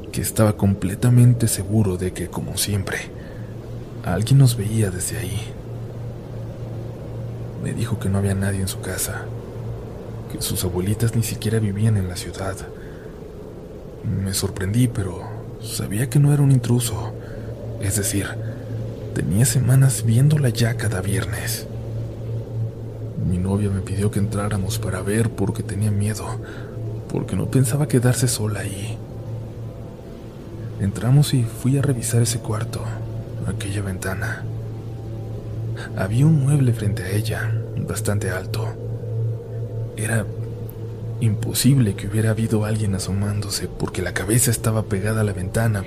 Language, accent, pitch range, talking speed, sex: Spanish, Mexican, 105-115 Hz, 125 wpm, male